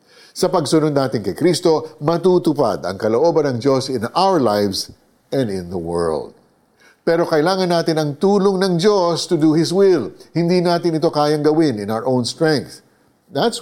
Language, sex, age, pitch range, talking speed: Filipino, male, 50-69, 115-175 Hz, 165 wpm